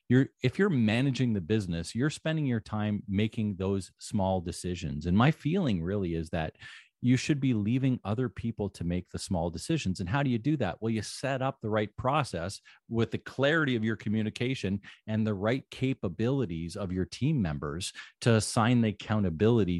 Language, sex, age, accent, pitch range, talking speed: English, male, 40-59, American, 95-130 Hz, 185 wpm